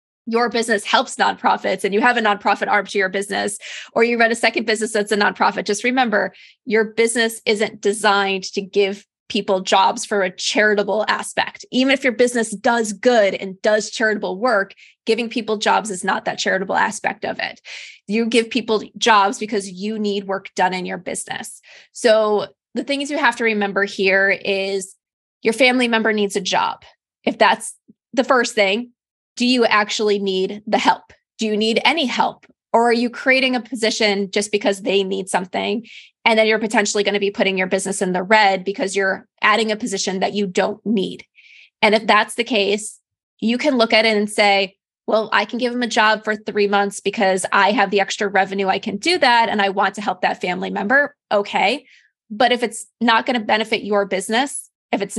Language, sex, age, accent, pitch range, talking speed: English, female, 20-39, American, 200-230 Hz, 200 wpm